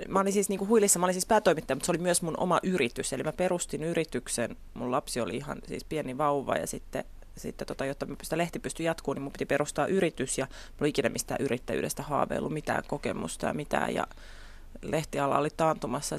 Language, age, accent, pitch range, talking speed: Finnish, 30-49, native, 140-195 Hz, 200 wpm